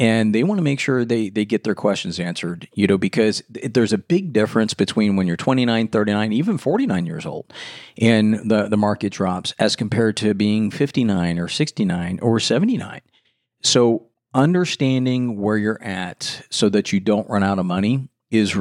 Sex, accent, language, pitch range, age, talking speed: male, American, English, 100-120 Hz, 40-59, 180 wpm